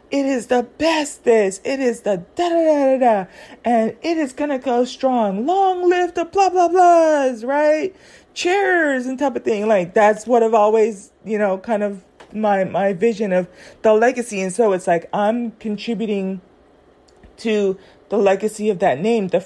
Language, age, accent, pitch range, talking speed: English, 30-49, American, 195-235 Hz, 185 wpm